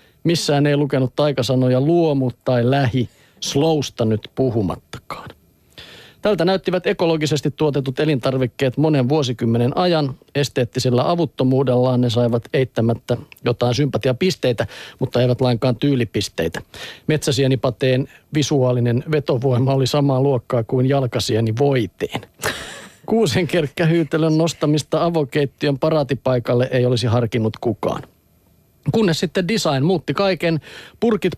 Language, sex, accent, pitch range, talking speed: Finnish, male, native, 125-155 Hz, 100 wpm